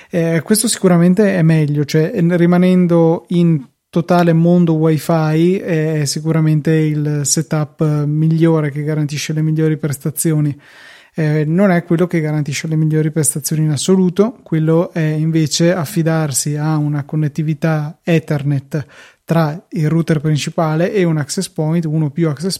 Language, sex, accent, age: Italian, male, native, 20-39